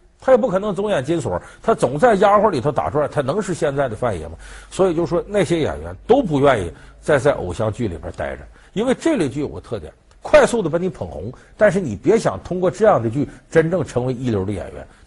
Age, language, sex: 50-69, Chinese, male